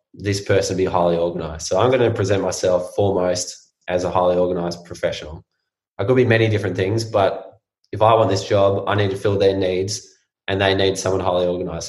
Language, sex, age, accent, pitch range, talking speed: English, male, 20-39, Australian, 90-100 Hz, 205 wpm